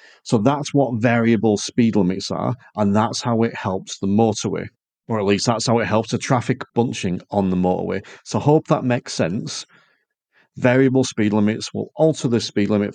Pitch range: 105-130 Hz